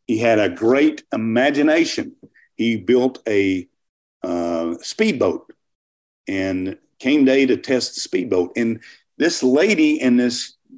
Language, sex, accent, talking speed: English, male, American, 125 wpm